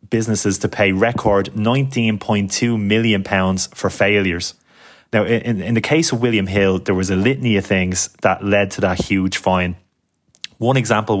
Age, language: 20-39, English